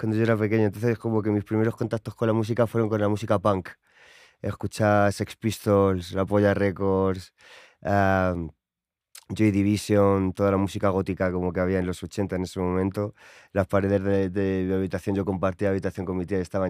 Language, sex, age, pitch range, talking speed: English, male, 20-39, 95-115 Hz, 195 wpm